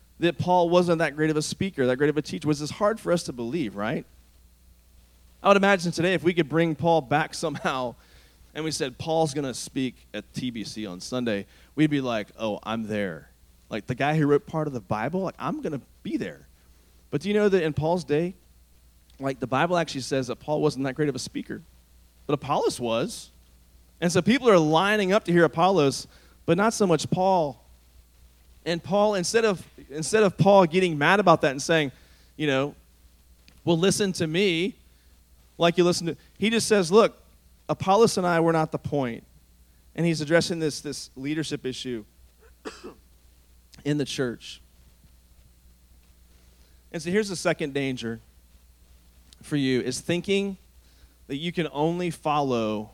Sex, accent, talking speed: male, American, 180 wpm